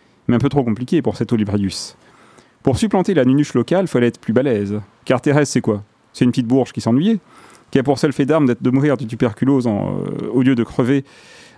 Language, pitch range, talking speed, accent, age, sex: French, 115-145 Hz, 230 wpm, French, 40-59, male